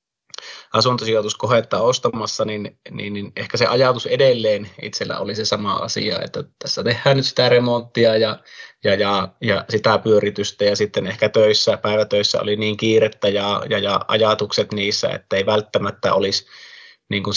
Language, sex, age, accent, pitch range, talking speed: Finnish, male, 20-39, native, 105-120 Hz, 150 wpm